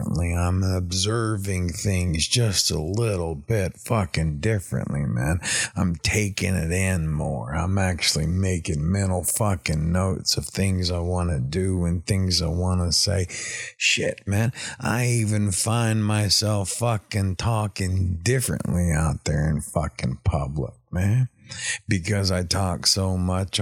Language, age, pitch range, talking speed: English, 50-69, 90-100 Hz, 135 wpm